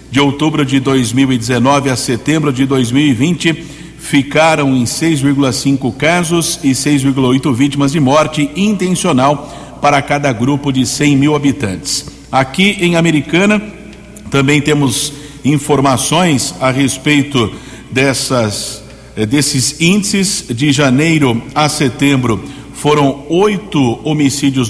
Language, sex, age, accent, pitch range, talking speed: Portuguese, male, 60-79, Brazilian, 130-155 Hz, 100 wpm